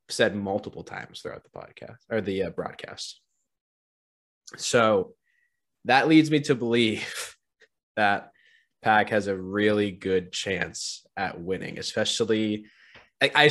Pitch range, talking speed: 100-135 Hz, 120 wpm